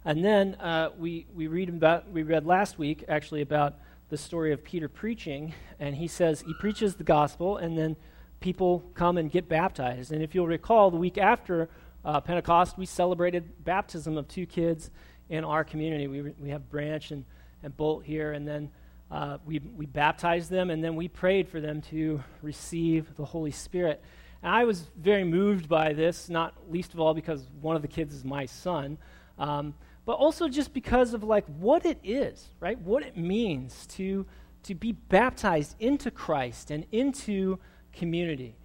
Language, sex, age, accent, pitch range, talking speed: English, male, 40-59, American, 155-200 Hz, 185 wpm